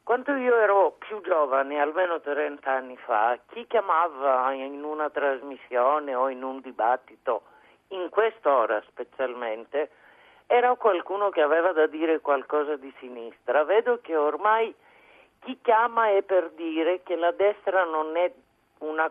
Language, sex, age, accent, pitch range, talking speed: Italian, male, 50-69, native, 145-220 Hz, 140 wpm